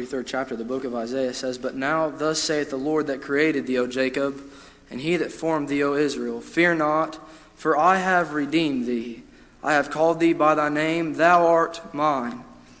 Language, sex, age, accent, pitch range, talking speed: English, male, 20-39, American, 145-170 Hz, 200 wpm